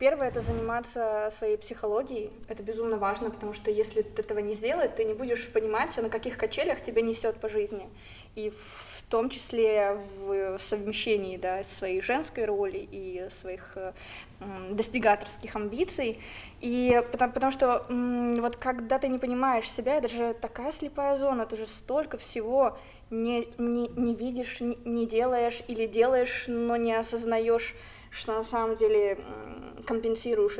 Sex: female